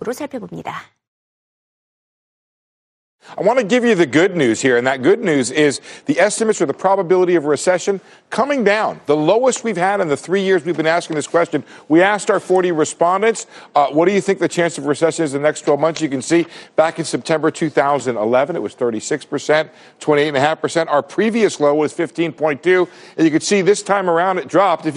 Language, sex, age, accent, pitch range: Korean, male, 50-69, American, 140-190 Hz